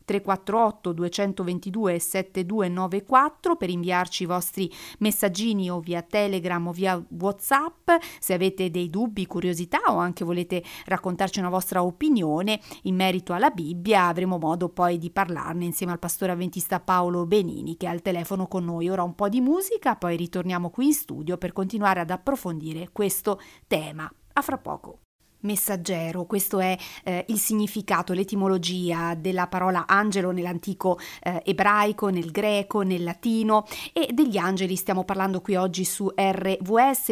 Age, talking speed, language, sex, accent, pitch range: 40-59, 145 wpm, Italian, female, native, 175-205 Hz